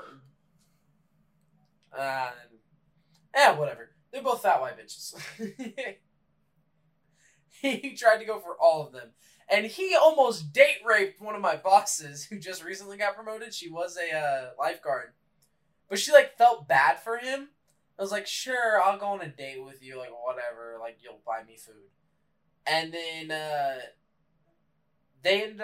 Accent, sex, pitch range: American, male, 150-210 Hz